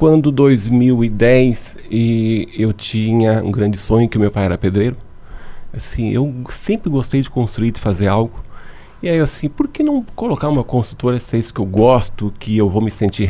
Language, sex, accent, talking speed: Portuguese, male, Brazilian, 195 wpm